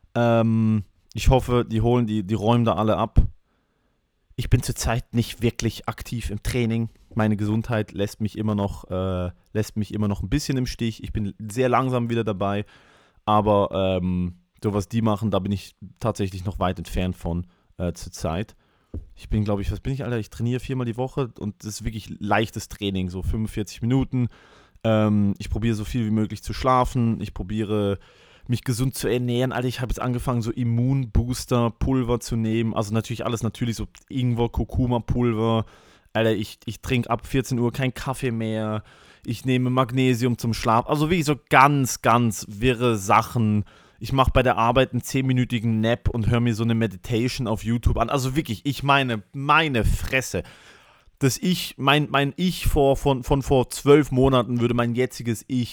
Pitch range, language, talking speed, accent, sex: 105-125 Hz, English, 180 wpm, German, male